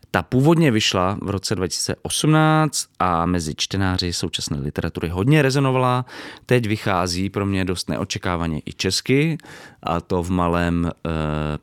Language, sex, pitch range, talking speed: Czech, male, 90-120 Hz, 135 wpm